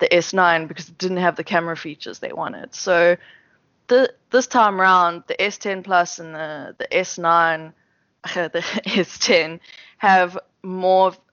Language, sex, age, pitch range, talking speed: English, female, 20-39, 160-190 Hz, 145 wpm